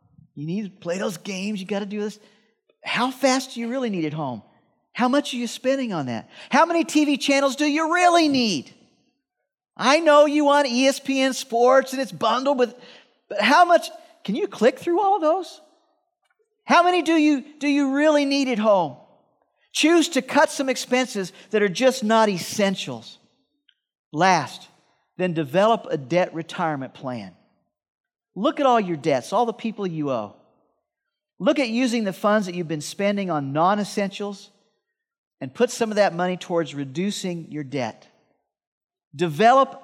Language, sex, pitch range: English, male, 170-265 Hz